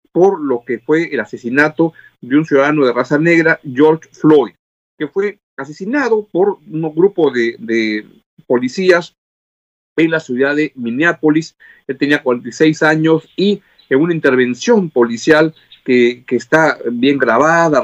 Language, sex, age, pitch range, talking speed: Spanish, male, 50-69, 135-175 Hz, 140 wpm